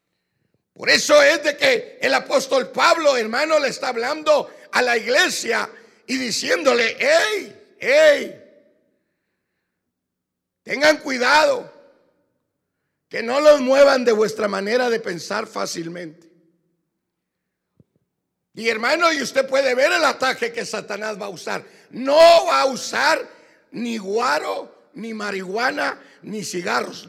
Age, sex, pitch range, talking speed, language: 60-79, male, 200-270 Hz, 120 wpm, Spanish